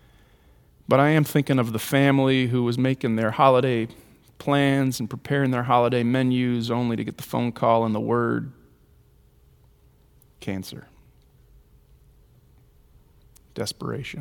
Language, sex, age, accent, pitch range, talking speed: English, male, 40-59, American, 110-135 Hz, 120 wpm